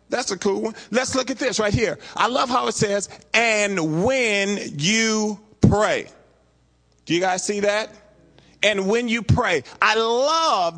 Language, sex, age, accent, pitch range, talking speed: English, male, 40-59, American, 195-250 Hz, 165 wpm